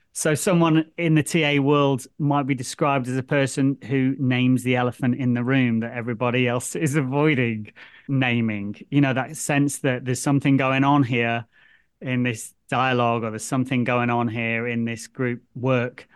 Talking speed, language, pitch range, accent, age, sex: 180 wpm, English, 120-140 Hz, British, 30-49, male